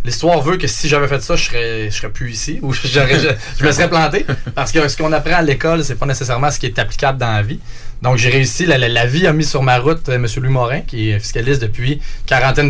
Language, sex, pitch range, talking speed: French, male, 115-145 Hz, 280 wpm